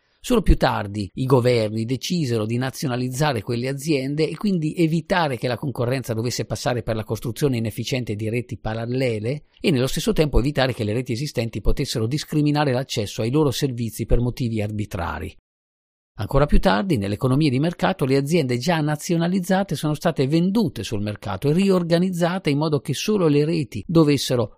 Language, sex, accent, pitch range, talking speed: Italian, male, native, 110-150 Hz, 165 wpm